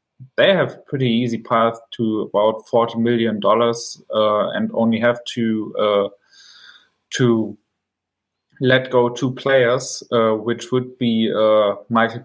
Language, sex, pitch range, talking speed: English, male, 115-135 Hz, 130 wpm